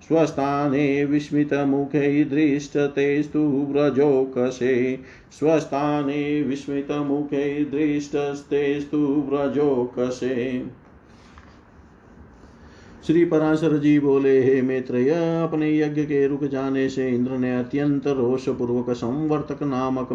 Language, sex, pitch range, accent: Hindi, male, 125-145 Hz, native